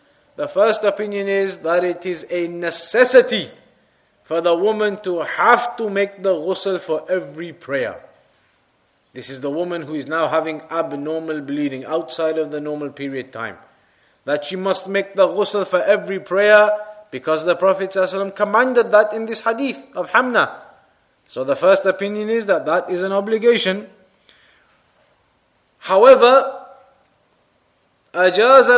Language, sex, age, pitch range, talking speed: English, male, 30-49, 175-215 Hz, 145 wpm